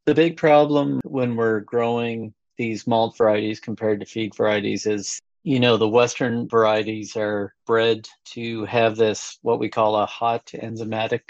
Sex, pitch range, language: male, 105-115 Hz, English